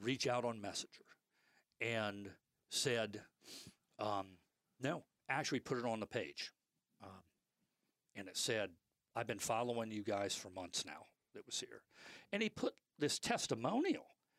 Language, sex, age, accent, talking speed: English, male, 50-69, American, 140 wpm